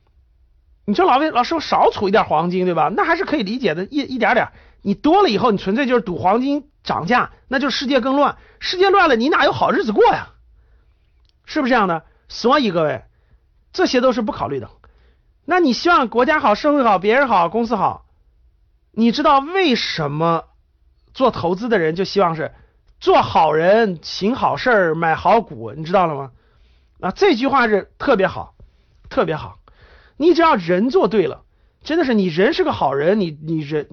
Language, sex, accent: Chinese, male, native